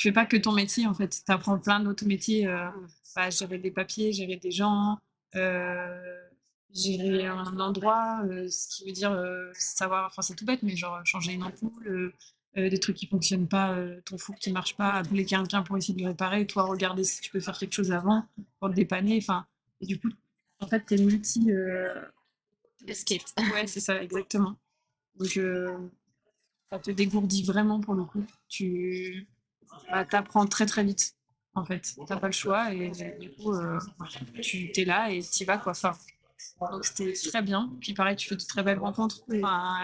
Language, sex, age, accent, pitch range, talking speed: French, female, 20-39, French, 185-210 Hz, 200 wpm